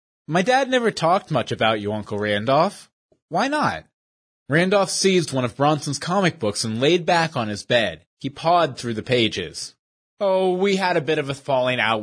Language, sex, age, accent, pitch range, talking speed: English, male, 30-49, American, 125-210 Hz, 190 wpm